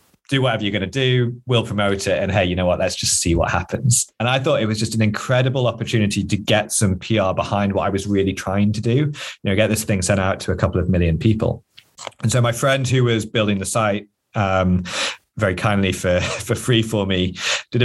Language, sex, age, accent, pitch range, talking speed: English, male, 30-49, British, 95-125 Hz, 240 wpm